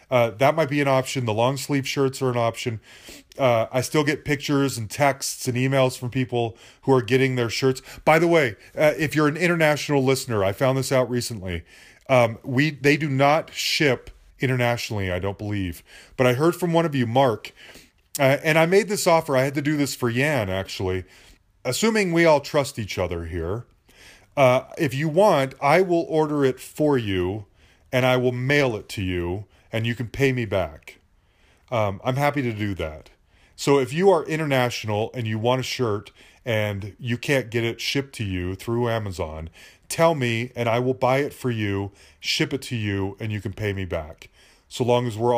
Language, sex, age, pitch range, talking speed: English, male, 30-49, 100-140 Hz, 205 wpm